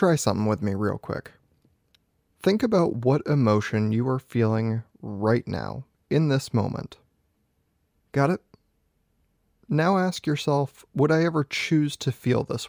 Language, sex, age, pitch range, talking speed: English, male, 20-39, 110-145 Hz, 140 wpm